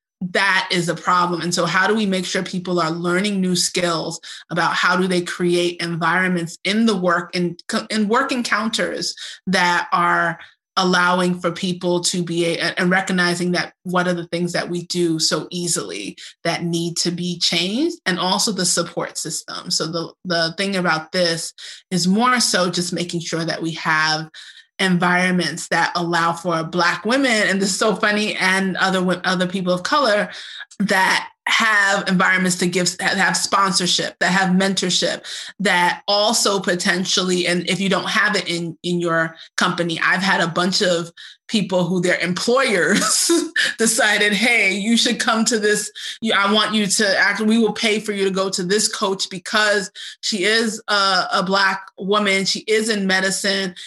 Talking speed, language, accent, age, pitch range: 175 wpm, English, American, 30-49, 175-205 Hz